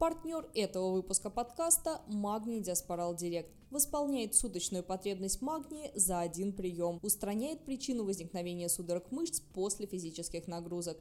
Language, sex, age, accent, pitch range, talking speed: Russian, female, 20-39, native, 180-250 Hz, 120 wpm